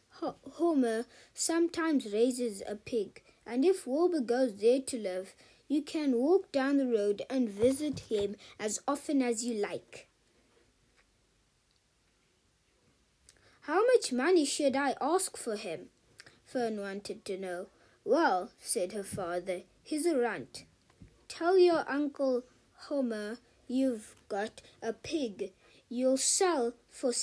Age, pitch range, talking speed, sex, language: 20-39, 220-290 Hz, 125 wpm, female, English